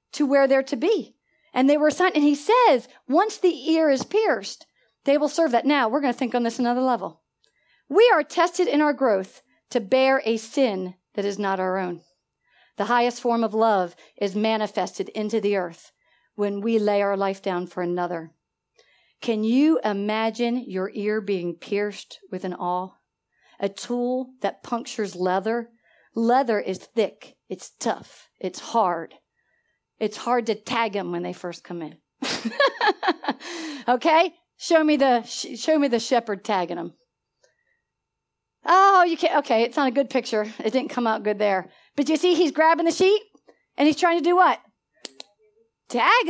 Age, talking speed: 40-59, 175 wpm